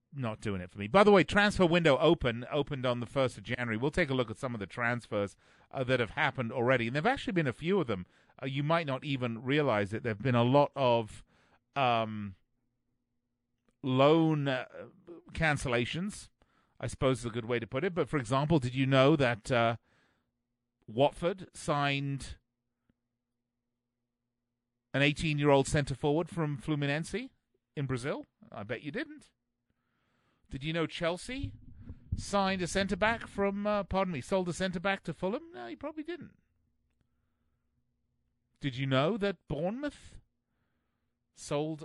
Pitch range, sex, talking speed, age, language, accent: 120-155 Hz, male, 165 wpm, 40-59, English, British